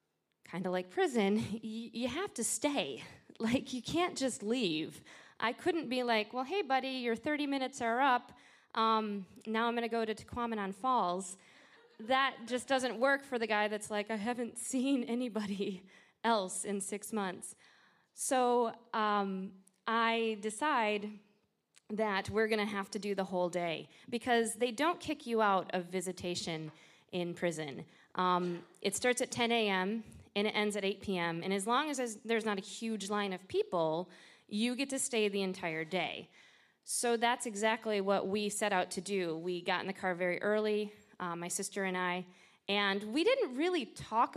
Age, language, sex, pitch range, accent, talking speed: 20-39, English, female, 200-255 Hz, American, 175 wpm